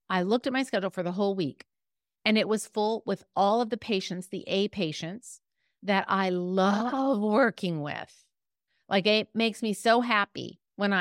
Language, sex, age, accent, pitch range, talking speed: English, female, 40-59, American, 185-250 Hz, 180 wpm